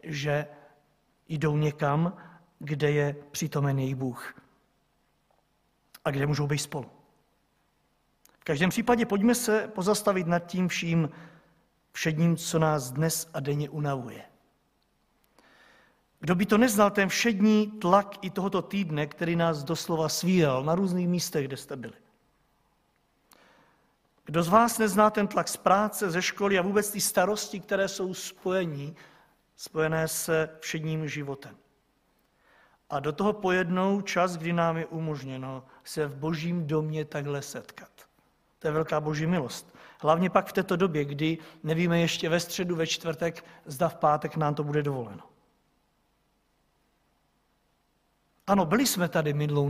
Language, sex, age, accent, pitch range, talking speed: Czech, male, 50-69, native, 150-195 Hz, 140 wpm